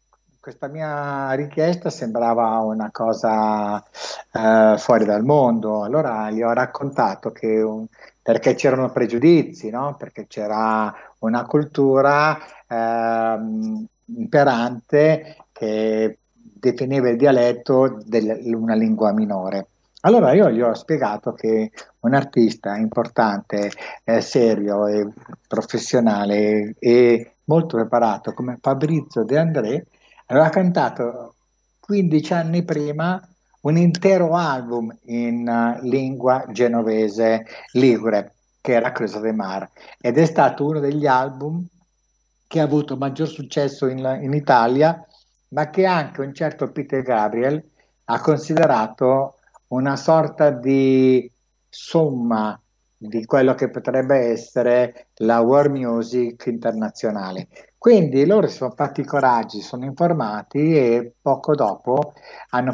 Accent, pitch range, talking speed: native, 115-150 Hz, 115 wpm